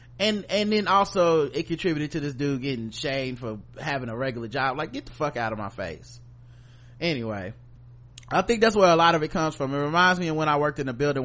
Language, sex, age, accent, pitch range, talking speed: English, male, 30-49, American, 120-165 Hz, 240 wpm